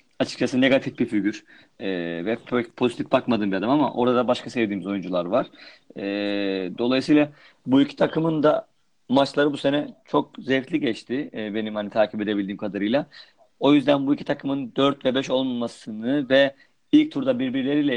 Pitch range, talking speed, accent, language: 110-145 Hz, 160 wpm, native, Turkish